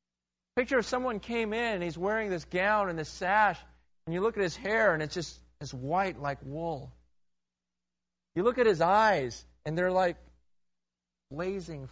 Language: English